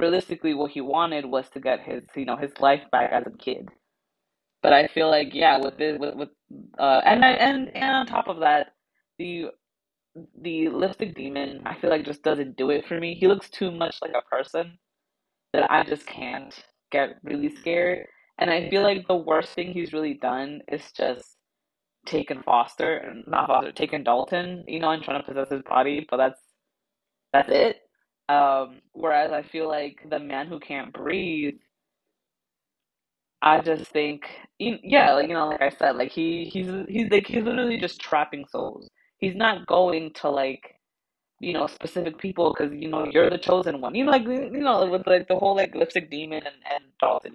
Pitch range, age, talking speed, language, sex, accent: 145-185 Hz, 20-39, 195 wpm, English, female, American